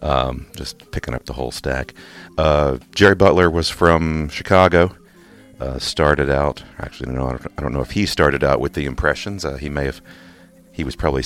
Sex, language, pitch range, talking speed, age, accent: male, English, 70-90 Hz, 180 wpm, 40-59, American